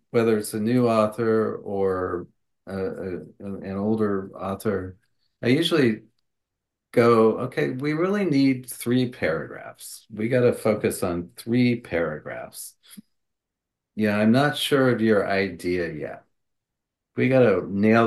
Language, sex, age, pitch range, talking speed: English, male, 50-69, 95-120 Hz, 125 wpm